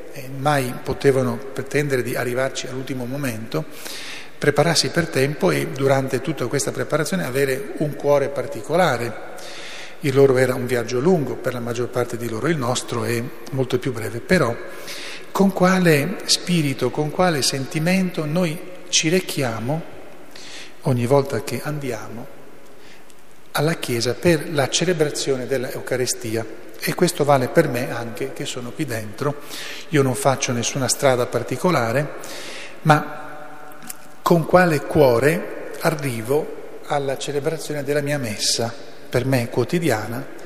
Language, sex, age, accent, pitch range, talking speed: Italian, male, 40-59, native, 125-155 Hz, 130 wpm